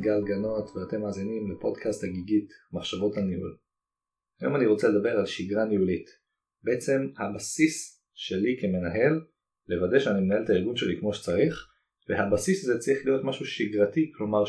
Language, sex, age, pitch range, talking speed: Hebrew, male, 30-49, 90-130 Hz, 140 wpm